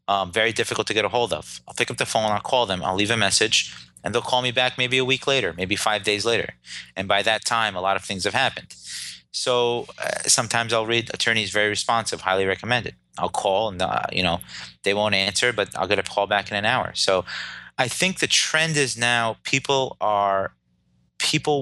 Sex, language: male, English